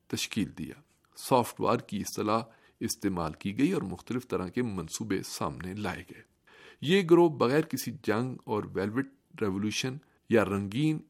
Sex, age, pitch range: male, 50-69, 105-140 Hz